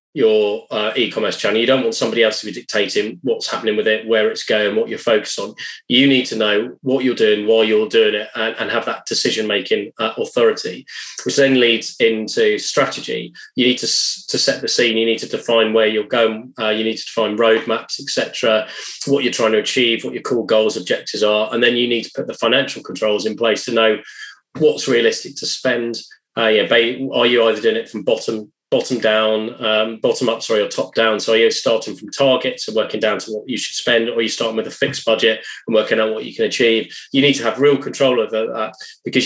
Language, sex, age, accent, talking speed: English, male, 20-39, British, 230 wpm